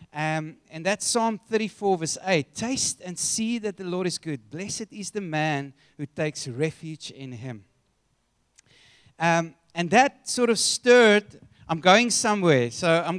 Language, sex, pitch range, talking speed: English, male, 145-195 Hz, 160 wpm